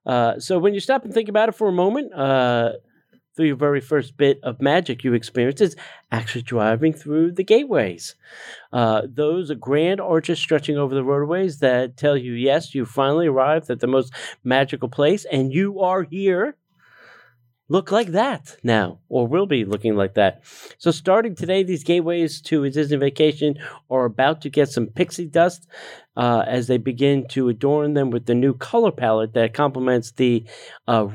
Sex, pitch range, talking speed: male, 120-165 Hz, 185 wpm